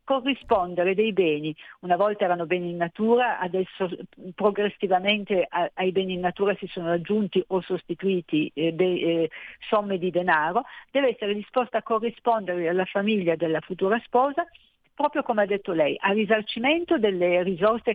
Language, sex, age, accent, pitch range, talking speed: Italian, female, 50-69, native, 175-225 Hz, 140 wpm